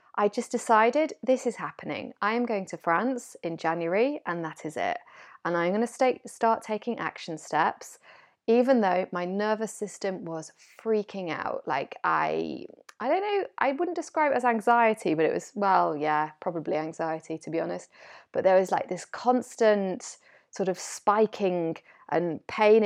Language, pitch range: English, 175-230 Hz